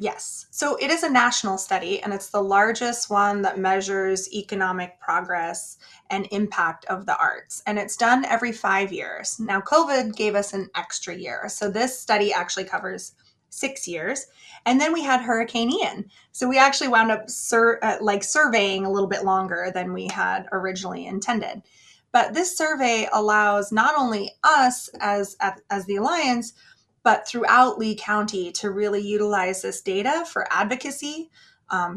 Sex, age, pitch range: female, 20-39, 200-255 Hz